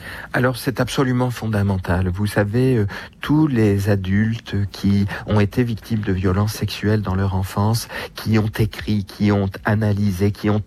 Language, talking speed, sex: French, 155 wpm, male